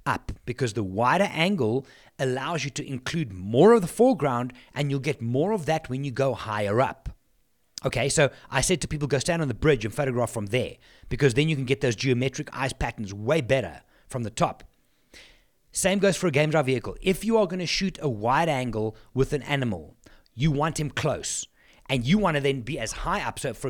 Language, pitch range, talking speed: English, 120-155 Hz, 215 wpm